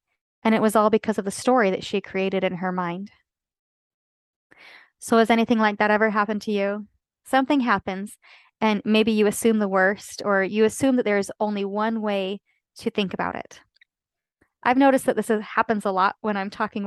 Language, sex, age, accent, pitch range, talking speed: English, female, 20-39, American, 200-240 Hz, 190 wpm